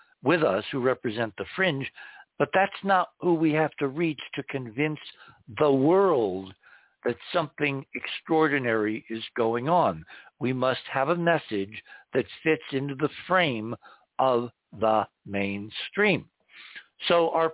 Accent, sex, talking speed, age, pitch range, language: American, male, 135 wpm, 60-79, 115-155 Hz, English